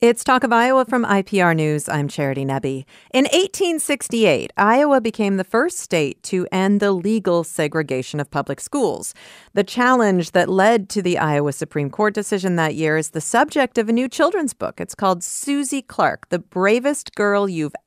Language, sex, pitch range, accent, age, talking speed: English, female, 160-230 Hz, American, 40-59, 180 wpm